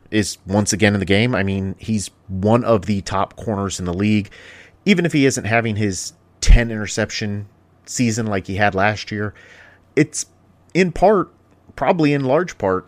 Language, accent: English, American